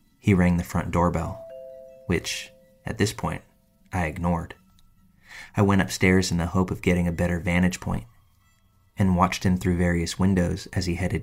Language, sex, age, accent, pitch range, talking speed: English, male, 20-39, American, 90-100 Hz, 170 wpm